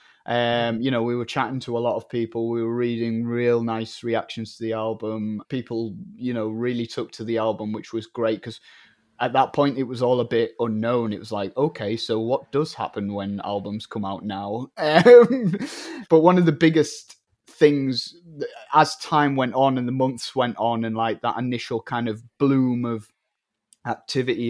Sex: male